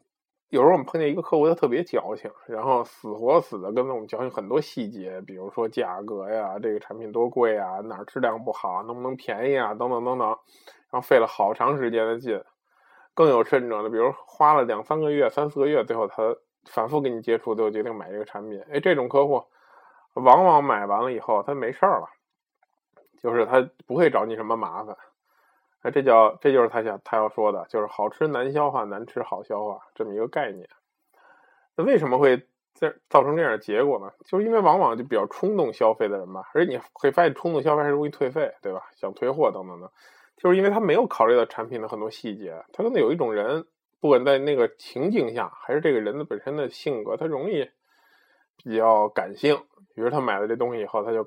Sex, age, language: male, 20-39, Chinese